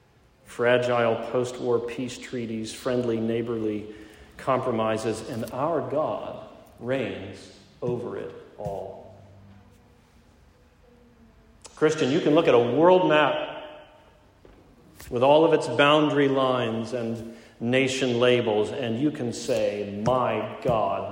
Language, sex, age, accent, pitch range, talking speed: English, male, 40-59, American, 110-145 Hz, 105 wpm